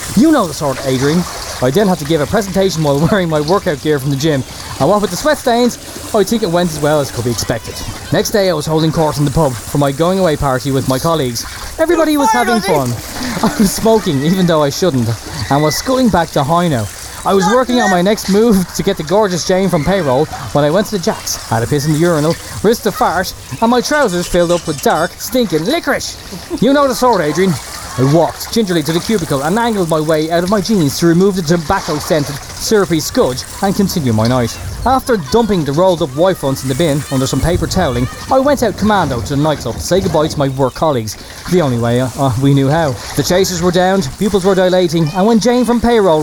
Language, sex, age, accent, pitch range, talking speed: English, male, 20-39, Irish, 135-195 Hz, 240 wpm